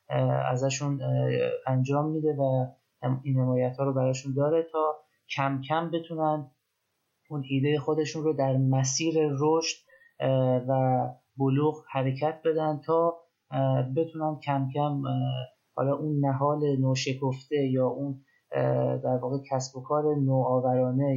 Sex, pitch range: male, 130-150 Hz